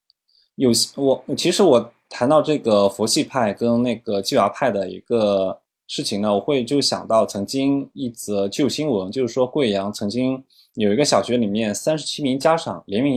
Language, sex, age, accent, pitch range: Chinese, male, 20-39, native, 105-145 Hz